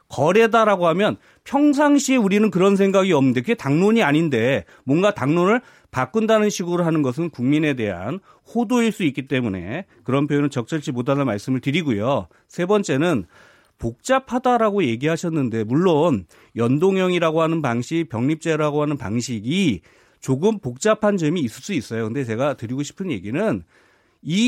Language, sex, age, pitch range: Korean, male, 40-59, 135-210 Hz